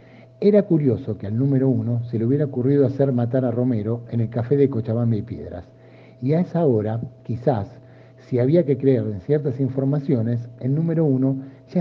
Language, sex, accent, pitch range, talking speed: Spanish, male, Argentinian, 115-140 Hz, 190 wpm